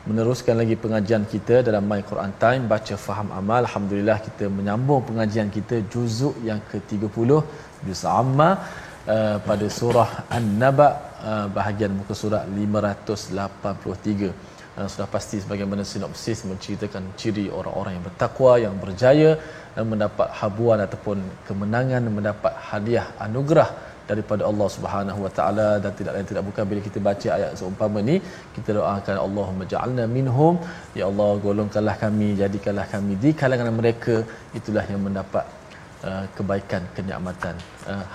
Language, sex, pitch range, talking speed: Malayalam, male, 100-120 Hz, 135 wpm